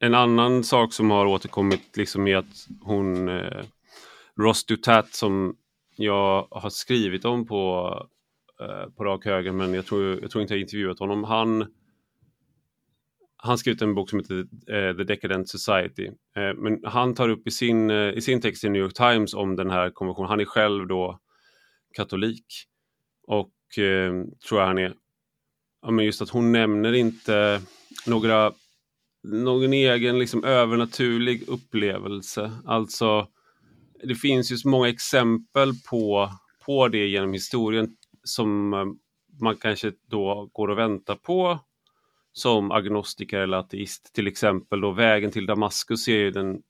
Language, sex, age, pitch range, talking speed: English, male, 30-49, 100-115 Hz, 150 wpm